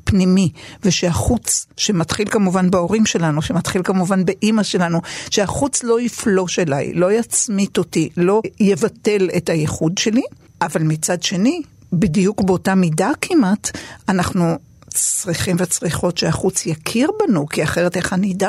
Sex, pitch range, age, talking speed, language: female, 170-210 Hz, 50-69, 130 wpm, Hebrew